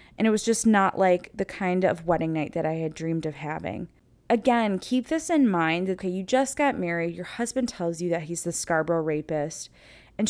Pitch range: 155-185 Hz